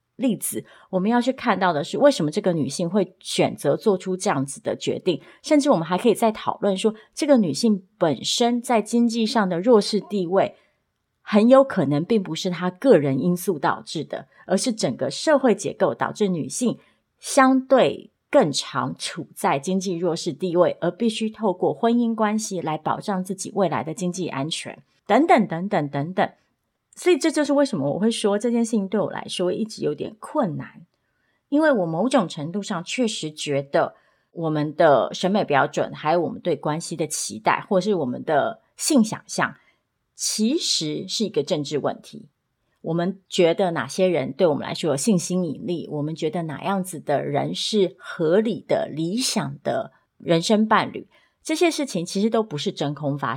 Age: 30-49